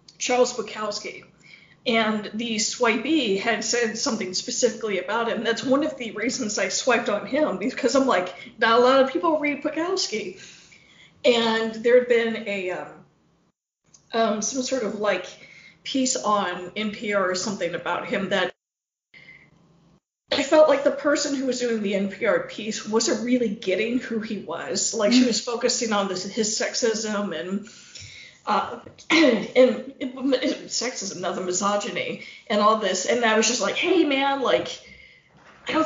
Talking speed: 160 wpm